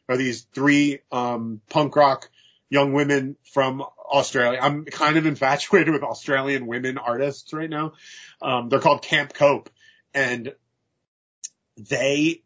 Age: 30-49